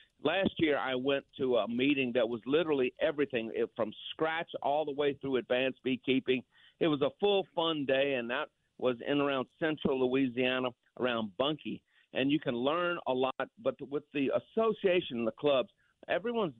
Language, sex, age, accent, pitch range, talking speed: English, male, 50-69, American, 125-155 Hz, 175 wpm